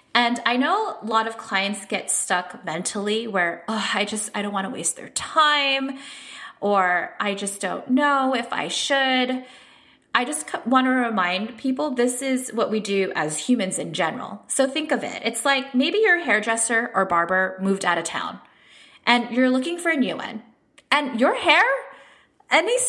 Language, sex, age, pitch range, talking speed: English, female, 20-39, 200-270 Hz, 185 wpm